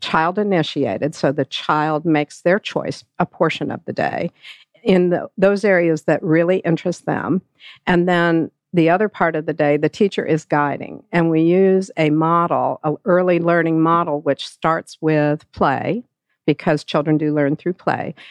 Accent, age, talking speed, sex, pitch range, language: American, 50-69, 165 wpm, female, 150-185 Hz, English